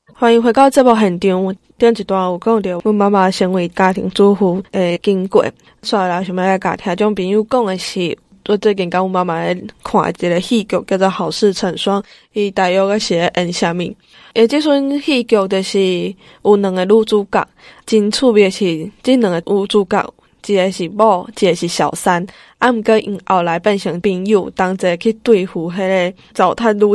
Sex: female